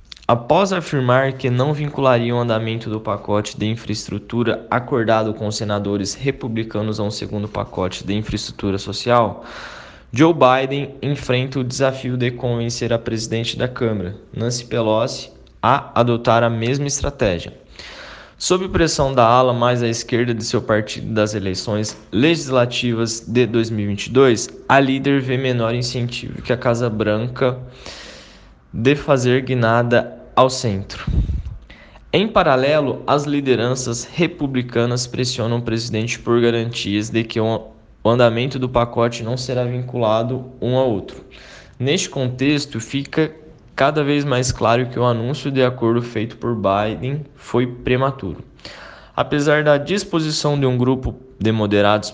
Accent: Brazilian